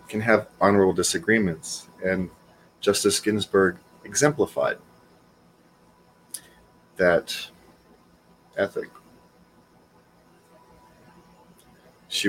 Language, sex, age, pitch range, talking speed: English, male, 30-49, 90-105 Hz, 55 wpm